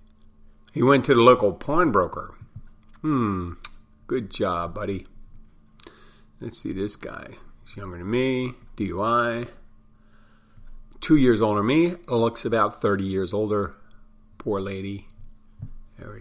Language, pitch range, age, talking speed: English, 100-110 Hz, 40-59, 120 wpm